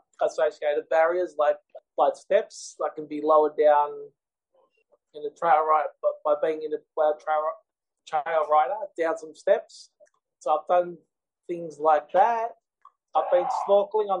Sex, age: male, 20-39